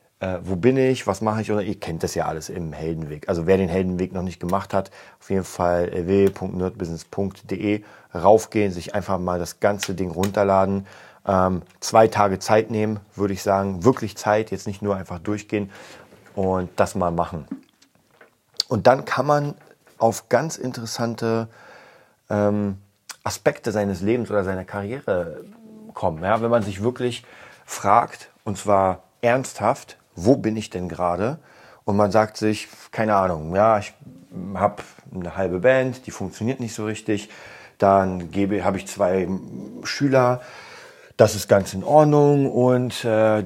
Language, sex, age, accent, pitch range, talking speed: German, male, 40-59, German, 95-115 Hz, 155 wpm